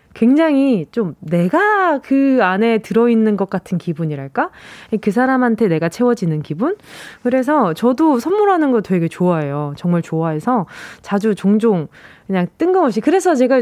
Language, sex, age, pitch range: Korean, female, 20-39, 195-310 Hz